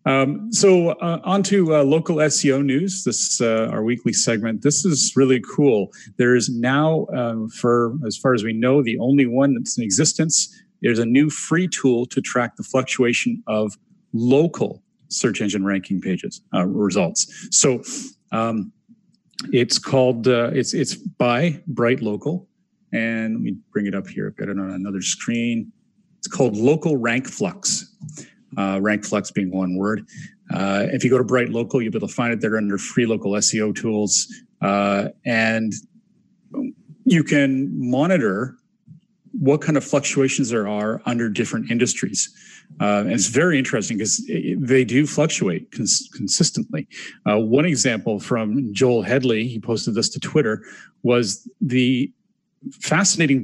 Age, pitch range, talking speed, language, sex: 40-59, 115-170 Hz, 160 wpm, English, male